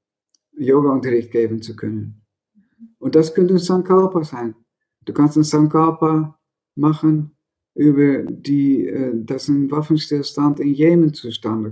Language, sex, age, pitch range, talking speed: German, male, 50-69, 125-160 Hz, 120 wpm